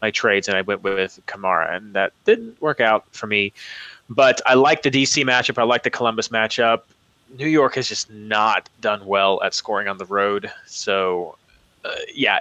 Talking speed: 195 wpm